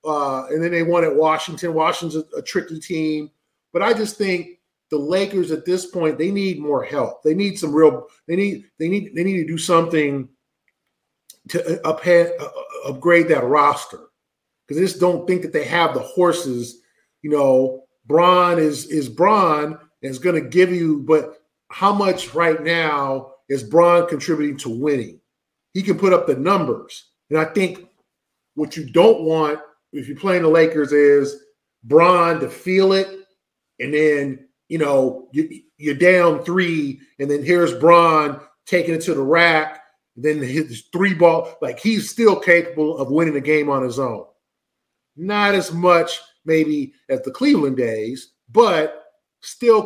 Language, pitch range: English, 150-180 Hz